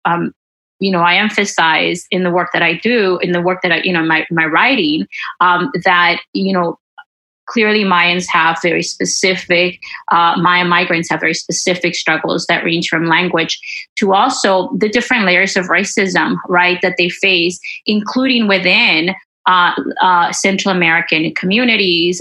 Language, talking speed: English, 160 wpm